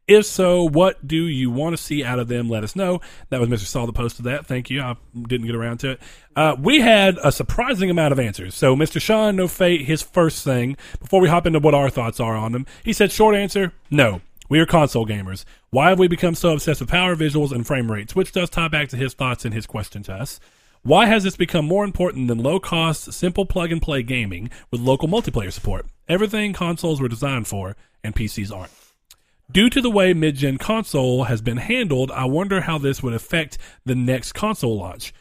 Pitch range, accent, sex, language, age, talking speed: 120-165 Hz, American, male, English, 40-59, 220 wpm